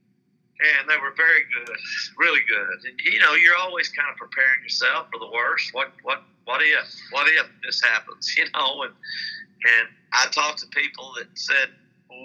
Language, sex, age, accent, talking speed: English, male, 50-69, American, 185 wpm